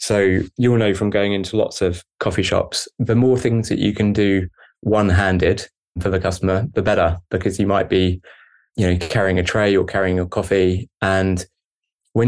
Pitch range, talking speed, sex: 90-100 Hz, 190 wpm, male